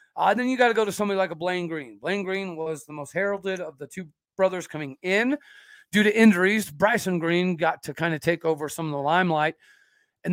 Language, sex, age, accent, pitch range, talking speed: English, male, 40-59, American, 155-215 Hz, 230 wpm